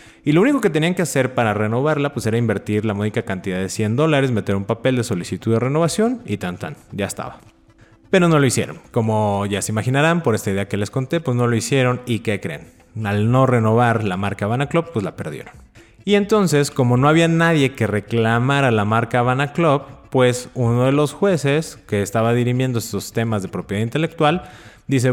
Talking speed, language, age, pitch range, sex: 210 wpm, Spanish, 20-39, 110-140 Hz, male